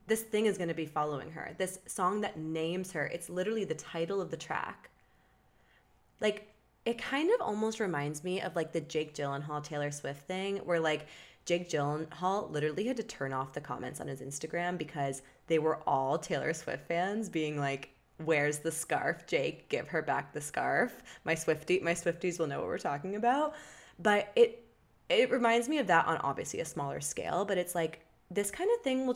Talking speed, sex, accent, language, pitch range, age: 200 wpm, female, American, English, 150-200 Hz, 20-39